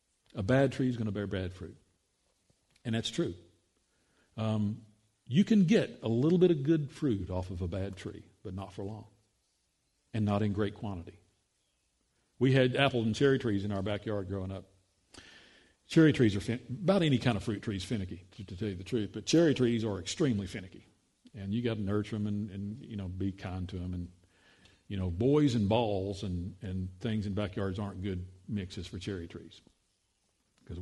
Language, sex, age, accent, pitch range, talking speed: English, male, 50-69, American, 95-130 Hz, 200 wpm